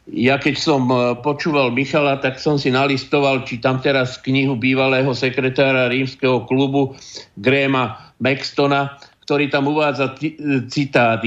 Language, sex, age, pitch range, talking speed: Slovak, male, 50-69, 130-150 Hz, 120 wpm